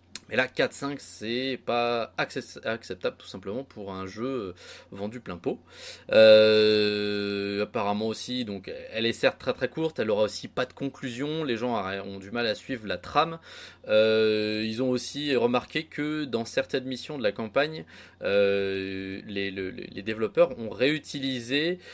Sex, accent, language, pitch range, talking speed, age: male, French, French, 100-125 Hz, 165 wpm, 20-39